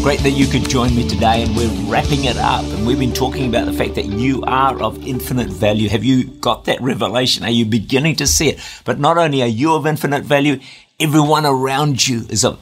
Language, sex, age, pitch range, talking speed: English, male, 50-69, 115-145 Hz, 235 wpm